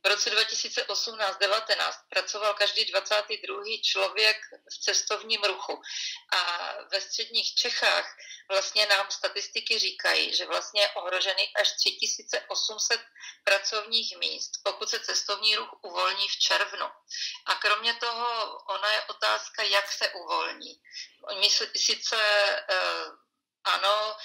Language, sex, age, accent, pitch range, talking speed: Czech, female, 40-59, native, 195-230 Hz, 105 wpm